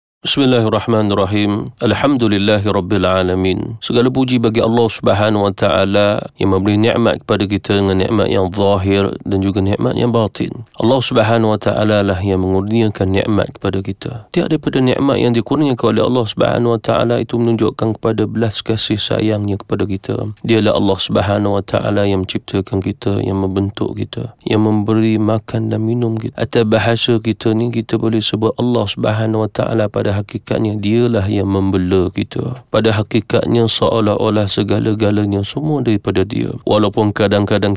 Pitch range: 100-115 Hz